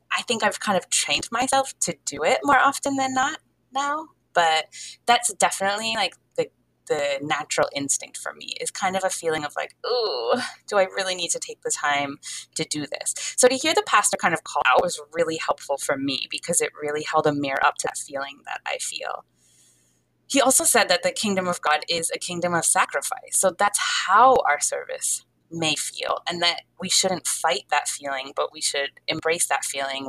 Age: 20-39